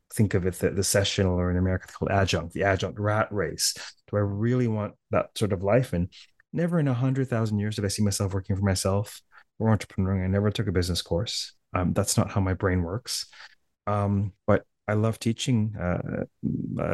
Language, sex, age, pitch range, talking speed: English, male, 30-49, 95-115 Hz, 205 wpm